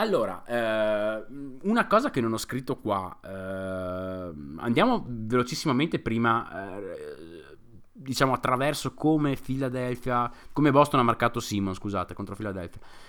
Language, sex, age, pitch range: Italian, male, 20-39, 100-135 Hz